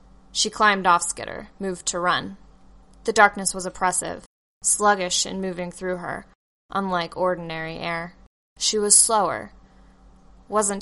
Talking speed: 130 wpm